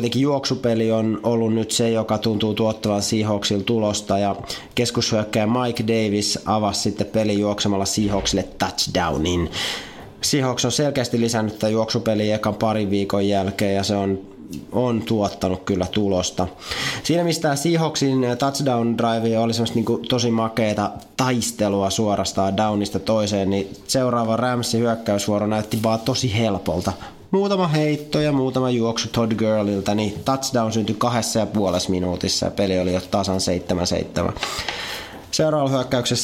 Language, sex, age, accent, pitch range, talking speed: Finnish, male, 20-39, native, 100-120 Hz, 130 wpm